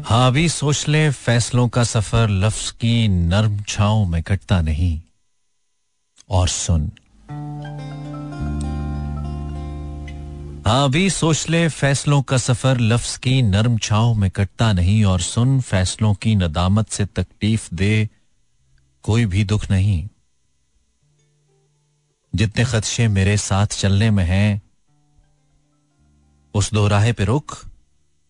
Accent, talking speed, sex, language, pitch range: native, 110 wpm, male, Hindi, 90-120 Hz